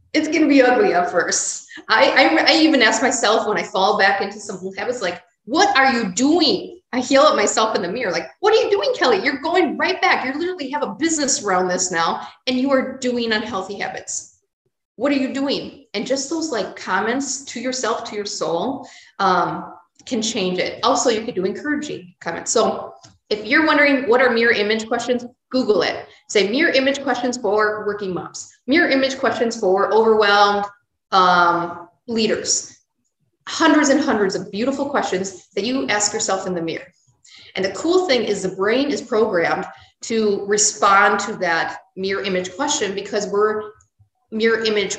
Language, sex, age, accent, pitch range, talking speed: English, female, 30-49, American, 190-270 Hz, 185 wpm